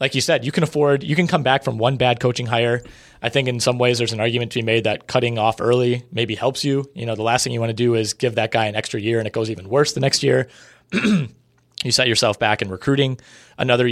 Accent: American